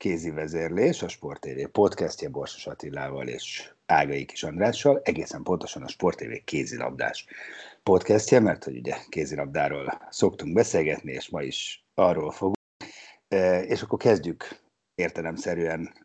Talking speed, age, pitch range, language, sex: 120 wpm, 60-79, 80-105 Hz, Hungarian, male